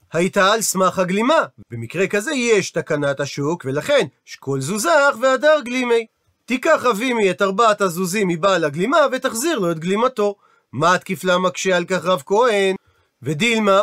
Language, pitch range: Hebrew, 180-240 Hz